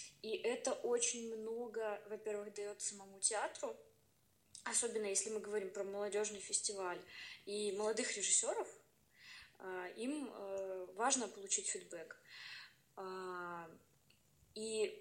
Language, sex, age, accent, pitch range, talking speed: Russian, female, 20-39, native, 195-220 Hz, 90 wpm